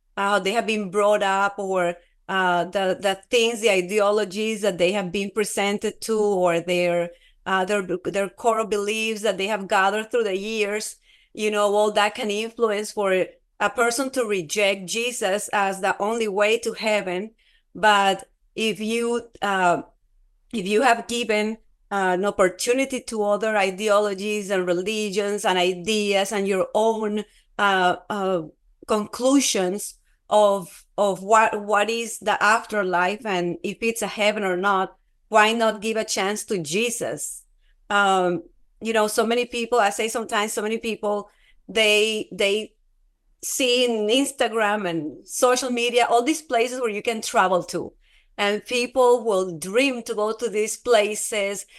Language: English